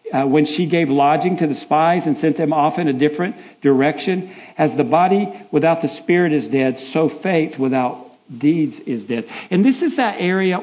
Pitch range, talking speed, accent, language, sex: 145-200 Hz, 200 wpm, American, English, male